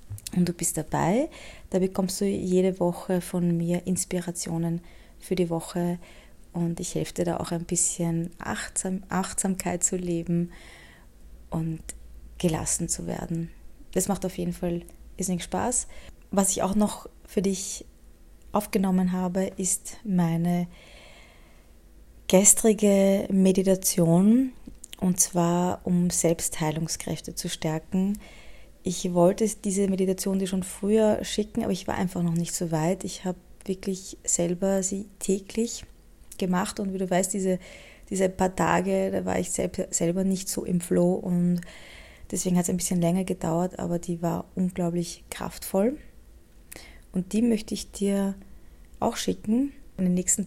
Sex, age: female, 20-39